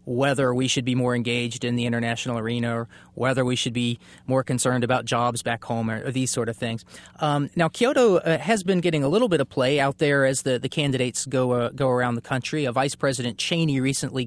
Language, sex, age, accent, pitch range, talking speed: English, male, 30-49, American, 125-150 Hz, 235 wpm